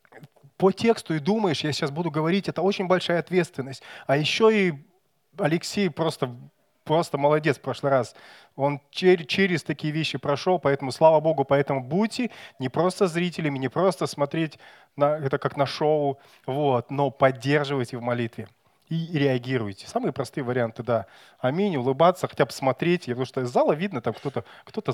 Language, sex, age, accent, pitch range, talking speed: Russian, male, 20-39, native, 130-170 Hz, 160 wpm